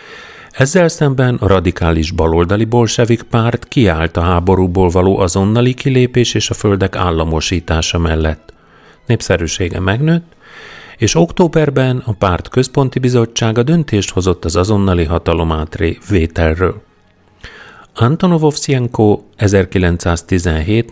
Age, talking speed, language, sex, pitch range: 40-59, 100 wpm, Hungarian, male, 85-120 Hz